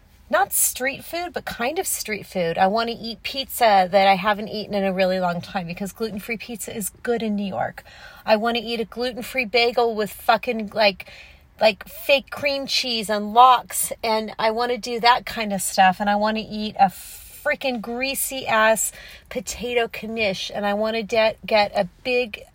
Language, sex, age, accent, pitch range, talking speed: English, female, 30-49, American, 195-240 Hz, 195 wpm